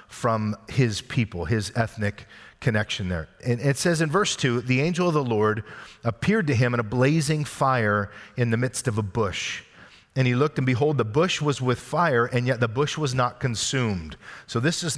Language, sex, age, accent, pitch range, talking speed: English, male, 40-59, American, 110-140 Hz, 205 wpm